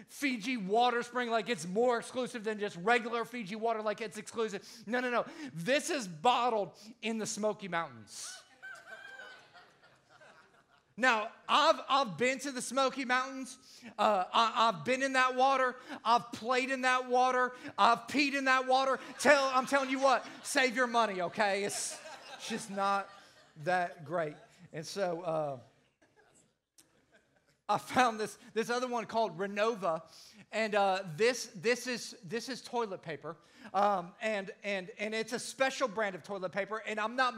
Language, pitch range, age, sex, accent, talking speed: English, 205-255 Hz, 40-59, male, American, 160 wpm